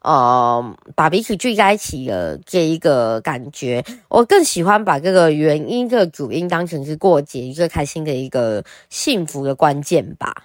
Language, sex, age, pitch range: Chinese, female, 20-39, 155-240 Hz